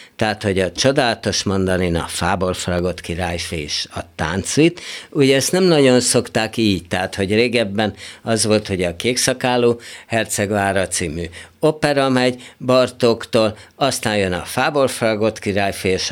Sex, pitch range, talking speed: male, 95-125 Hz, 125 wpm